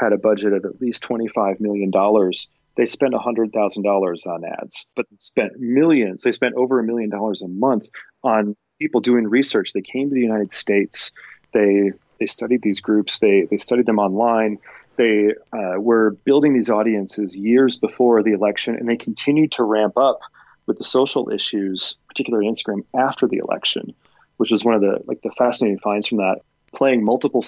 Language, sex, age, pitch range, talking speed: English, male, 30-49, 100-120 Hz, 180 wpm